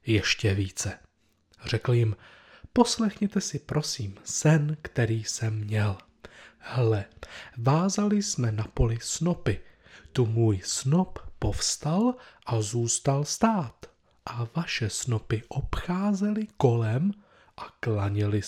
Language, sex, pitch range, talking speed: Czech, male, 110-155 Hz, 100 wpm